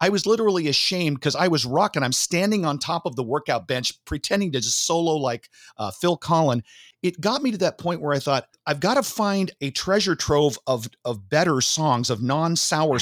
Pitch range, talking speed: 125-180 Hz, 220 wpm